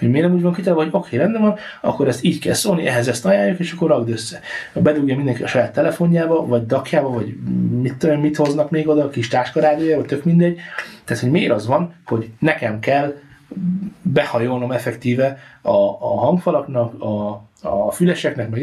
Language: Hungarian